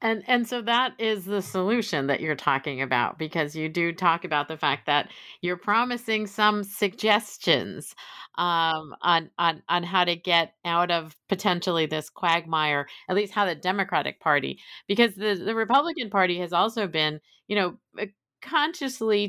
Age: 40-59